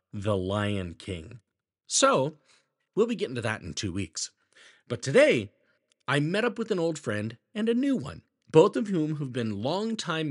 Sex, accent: male, American